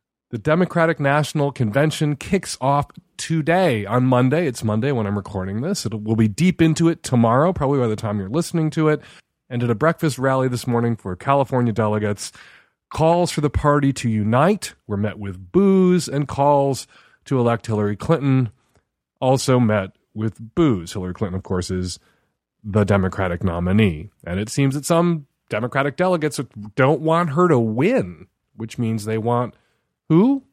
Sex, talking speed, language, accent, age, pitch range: male, 165 wpm, English, American, 30-49, 105-160 Hz